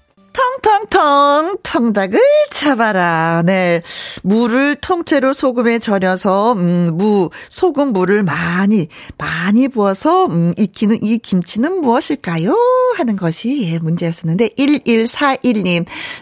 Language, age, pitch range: Korean, 40-59, 185-275 Hz